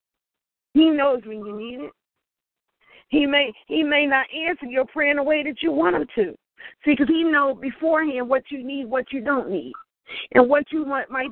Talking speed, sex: 195 wpm, female